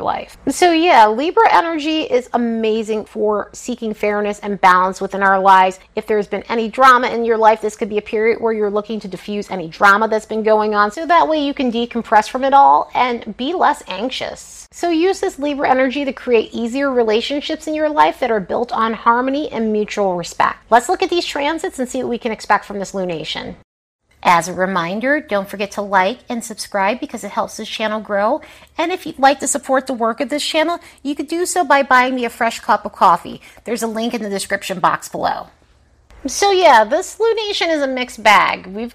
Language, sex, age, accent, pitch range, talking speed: English, female, 30-49, American, 210-280 Hz, 215 wpm